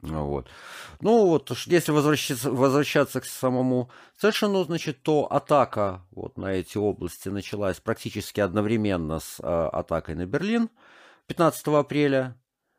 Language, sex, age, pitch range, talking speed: Russian, male, 50-69, 95-130 Hz, 120 wpm